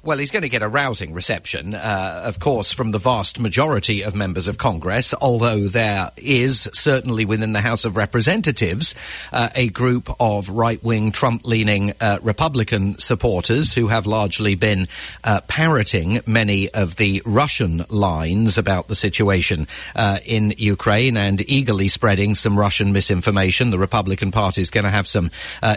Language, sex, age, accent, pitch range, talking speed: English, male, 40-59, British, 105-135 Hz, 160 wpm